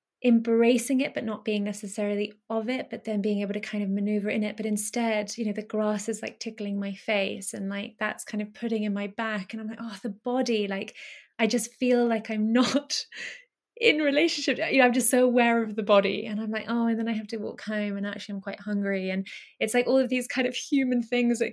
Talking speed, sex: 250 wpm, female